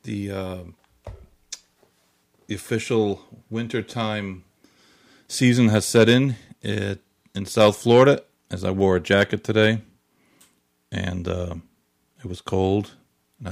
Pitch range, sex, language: 95-115 Hz, male, English